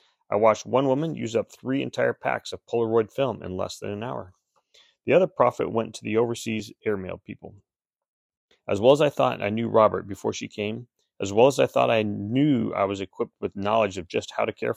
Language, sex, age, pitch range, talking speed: English, male, 30-49, 95-115 Hz, 220 wpm